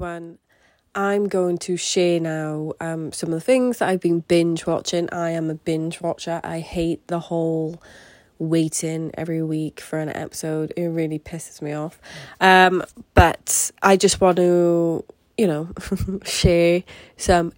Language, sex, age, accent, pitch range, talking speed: English, female, 20-39, British, 165-185 Hz, 155 wpm